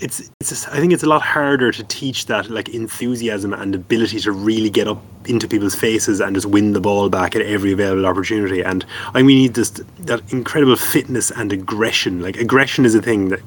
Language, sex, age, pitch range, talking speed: English, male, 20-39, 100-125 Hz, 225 wpm